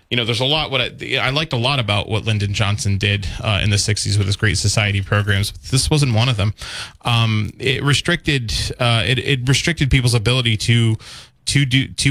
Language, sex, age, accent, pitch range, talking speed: English, male, 20-39, American, 105-125 Hz, 205 wpm